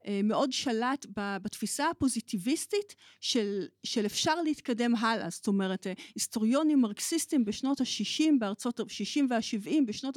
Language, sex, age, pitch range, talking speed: Hebrew, female, 40-59, 215-290 Hz, 100 wpm